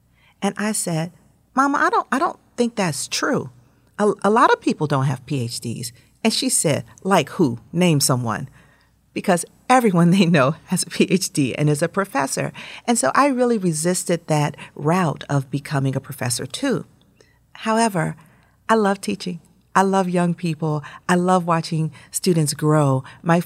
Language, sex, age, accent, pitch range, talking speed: English, female, 40-59, American, 145-195 Hz, 160 wpm